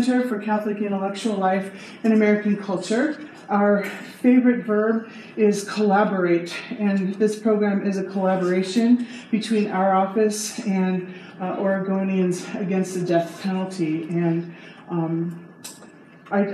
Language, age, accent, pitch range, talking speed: English, 40-59, American, 185-220 Hz, 115 wpm